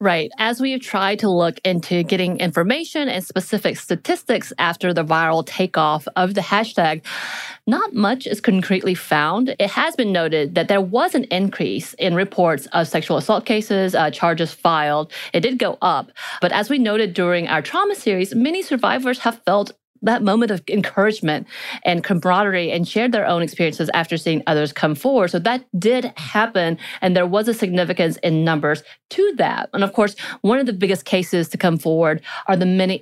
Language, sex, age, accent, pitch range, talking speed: English, female, 30-49, American, 165-210 Hz, 185 wpm